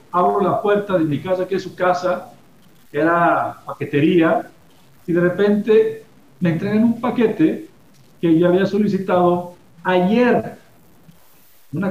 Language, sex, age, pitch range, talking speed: Spanish, male, 50-69, 115-185 Hz, 130 wpm